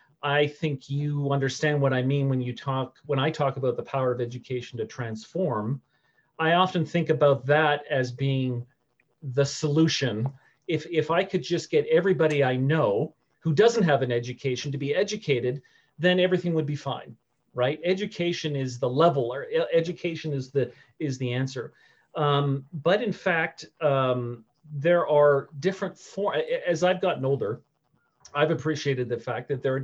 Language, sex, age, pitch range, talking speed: English, male, 40-59, 130-155 Hz, 165 wpm